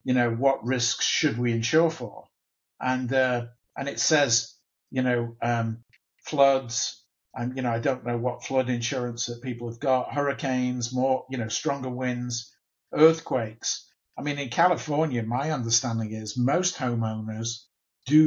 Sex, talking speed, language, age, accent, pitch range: male, 155 wpm, English, 50-69, British, 120-140 Hz